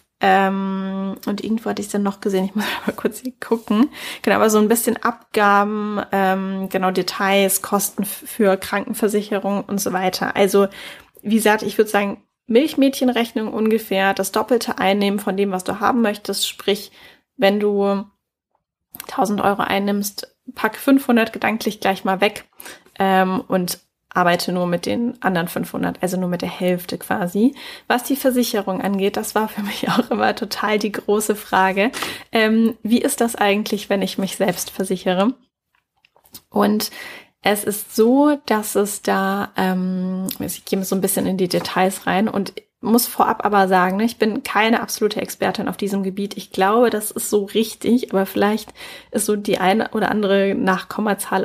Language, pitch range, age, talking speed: German, 195-230 Hz, 10-29, 165 wpm